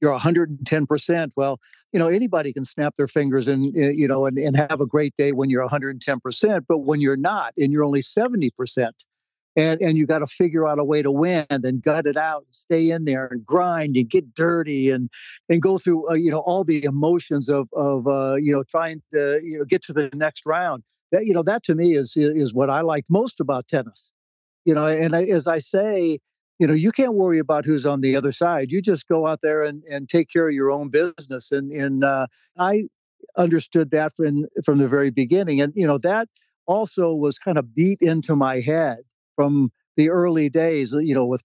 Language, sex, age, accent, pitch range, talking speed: English, male, 60-79, American, 140-170 Hz, 235 wpm